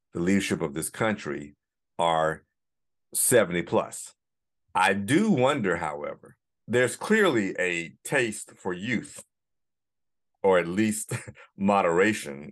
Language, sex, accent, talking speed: English, male, American, 105 wpm